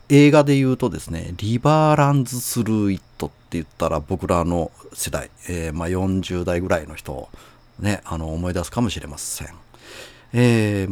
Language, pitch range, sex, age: Japanese, 85-125 Hz, male, 40-59